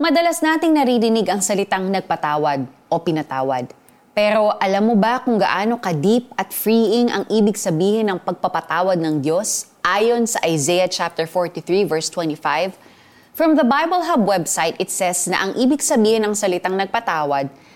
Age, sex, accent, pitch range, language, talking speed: 20-39, female, native, 175-245 Hz, Filipino, 150 wpm